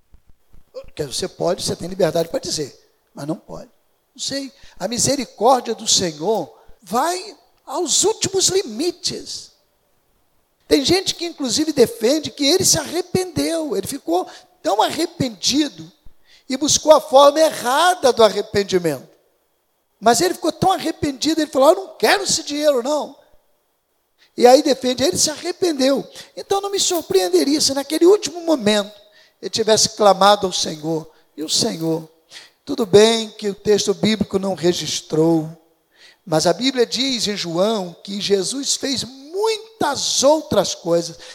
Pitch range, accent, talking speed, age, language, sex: 210-310 Hz, Brazilian, 140 wpm, 50-69, Portuguese, male